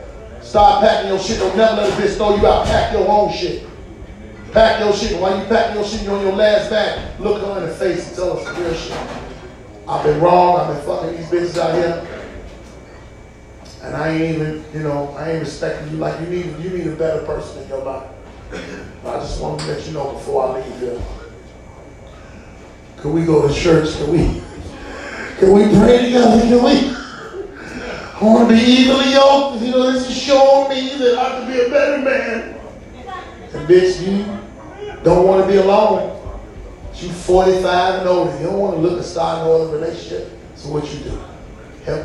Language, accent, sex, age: English, American, male, 30-49